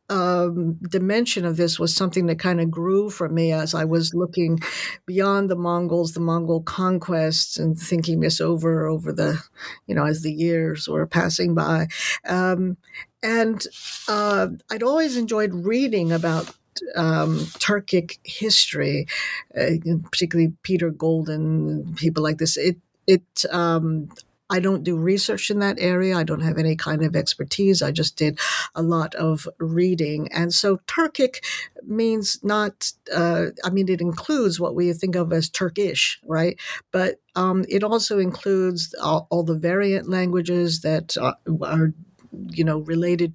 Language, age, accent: English, 50-69, American